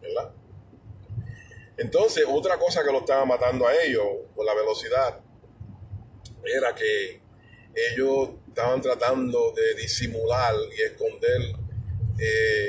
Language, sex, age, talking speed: English, male, 30-49, 110 wpm